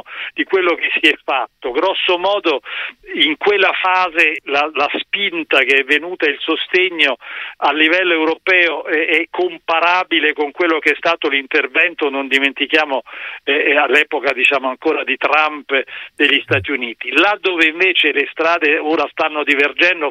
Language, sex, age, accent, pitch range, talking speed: Italian, male, 50-69, native, 145-180 Hz, 150 wpm